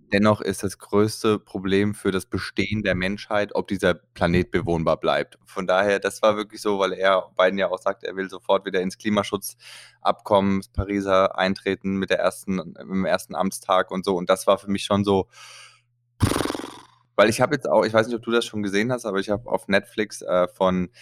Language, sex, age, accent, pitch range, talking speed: German, male, 20-39, German, 95-105 Hz, 195 wpm